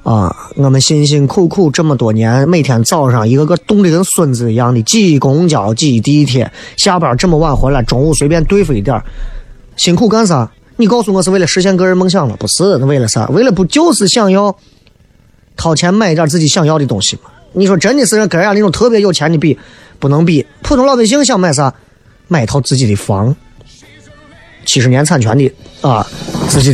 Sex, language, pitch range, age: male, Chinese, 115-165 Hz, 30-49